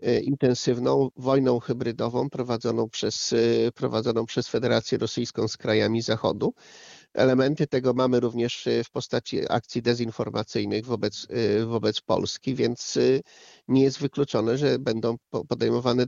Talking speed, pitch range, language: 110 wpm, 120-140 Hz, Polish